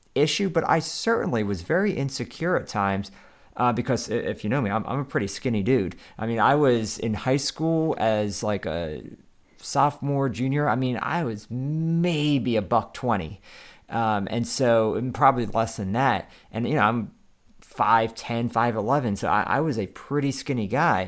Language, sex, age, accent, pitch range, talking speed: English, male, 40-59, American, 105-130 Hz, 175 wpm